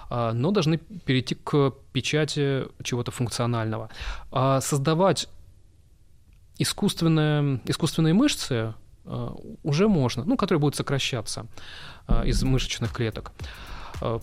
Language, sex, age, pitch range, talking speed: Russian, male, 20-39, 120-150 Hz, 90 wpm